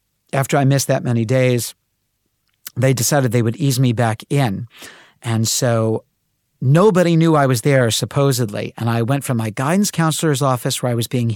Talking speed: 180 wpm